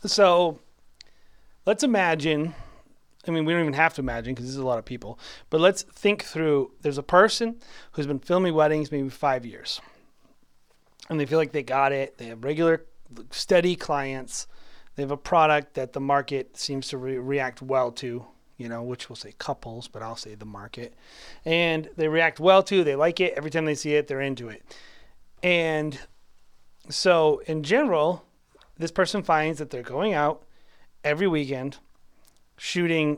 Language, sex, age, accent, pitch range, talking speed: English, male, 30-49, American, 130-170 Hz, 175 wpm